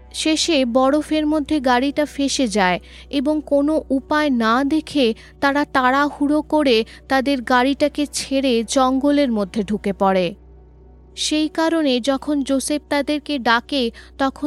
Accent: native